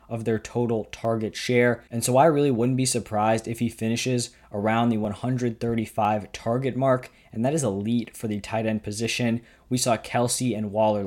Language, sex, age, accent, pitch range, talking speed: English, male, 20-39, American, 110-125 Hz, 185 wpm